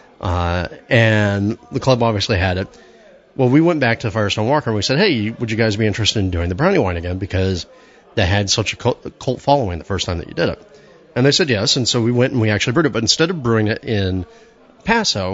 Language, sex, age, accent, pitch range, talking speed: English, male, 30-49, American, 95-130 Hz, 250 wpm